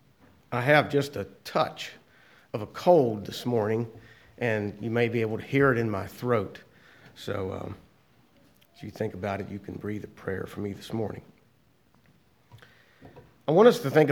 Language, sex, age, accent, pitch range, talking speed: English, male, 50-69, American, 110-135 Hz, 180 wpm